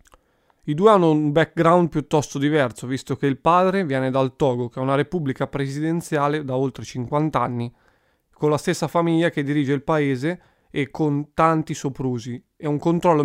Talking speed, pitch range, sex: 170 wpm, 135-170 Hz, male